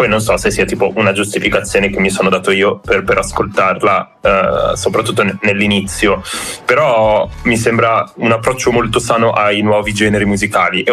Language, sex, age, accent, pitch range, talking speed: Italian, male, 20-39, native, 95-110 Hz, 175 wpm